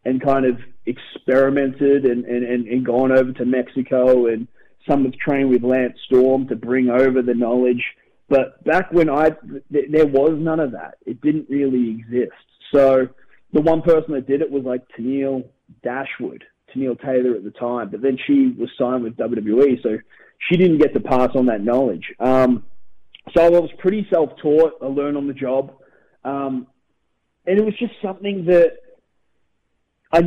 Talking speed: 175 wpm